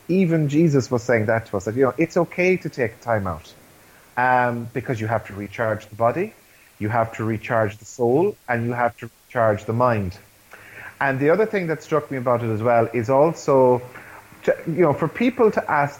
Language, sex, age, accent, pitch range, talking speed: English, male, 30-49, Irish, 115-150 Hz, 210 wpm